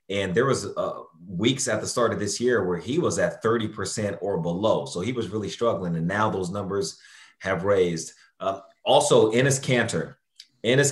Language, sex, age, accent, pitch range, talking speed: English, male, 30-49, American, 105-125 Hz, 190 wpm